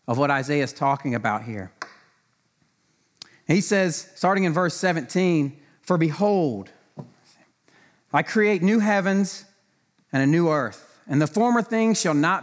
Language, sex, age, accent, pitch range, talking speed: English, male, 40-59, American, 130-185 Hz, 140 wpm